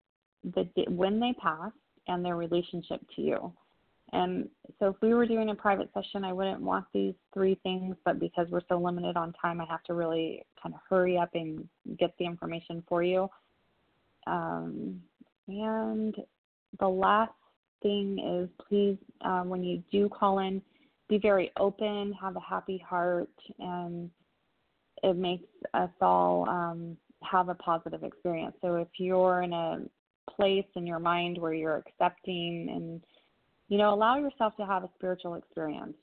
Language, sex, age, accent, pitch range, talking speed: English, female, 20-39, American, 170-195 Hz, 160 wpm